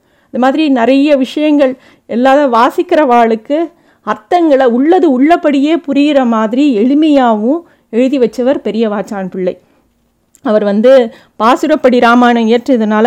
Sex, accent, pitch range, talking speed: female, native, 220-275 Hz, 95 wpm